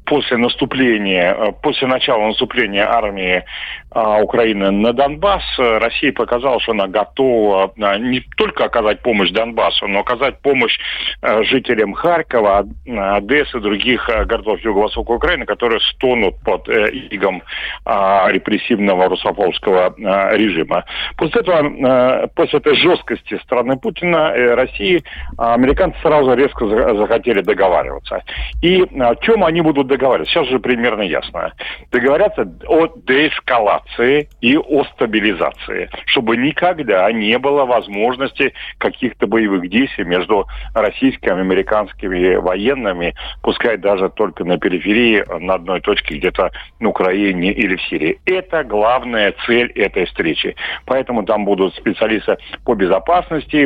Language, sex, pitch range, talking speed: Russian, male, 100-135 Hz, 125 wpm